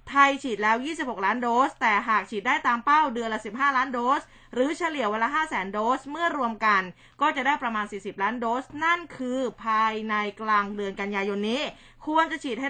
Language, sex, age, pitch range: Thai, female, 20-39, 215-280 Hz